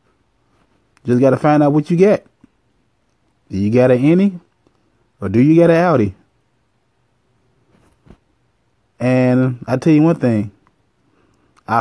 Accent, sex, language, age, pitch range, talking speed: American, male, English, 20-39, 110-150 Hz, 125 wpm